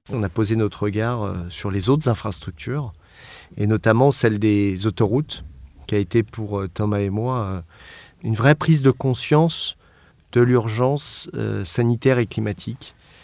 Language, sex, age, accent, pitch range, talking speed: French, male, 40-59, French, 100-125 Hz, 140 wpm